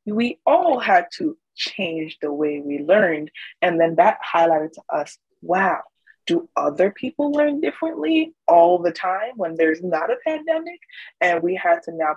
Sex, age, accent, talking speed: female, 20-39, American, 170 wpm